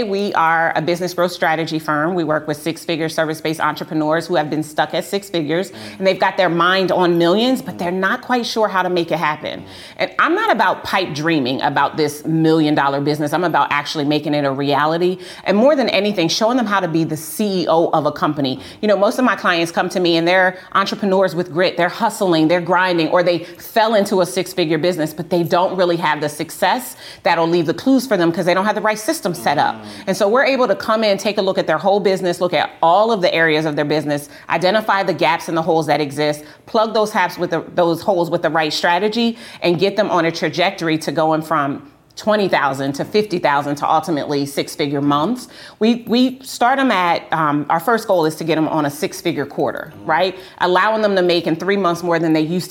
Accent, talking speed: American, 230 wpm